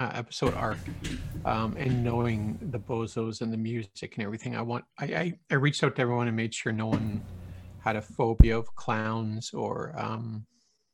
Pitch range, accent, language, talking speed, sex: 110-140 Hz, American, English, 185 wpm, male